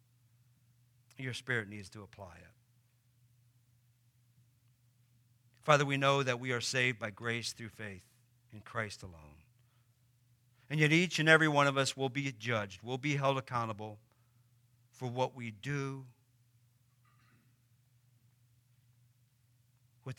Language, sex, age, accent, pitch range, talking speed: English, male, 50-69, American, 120-125 Hz, 120 wpm